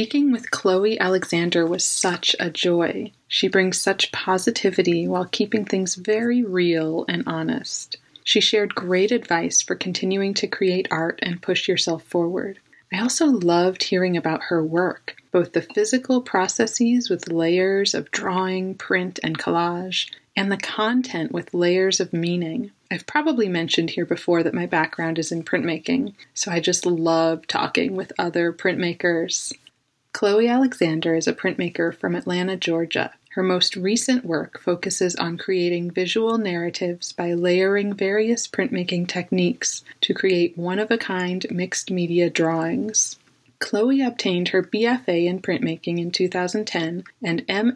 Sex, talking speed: female, 140 wpm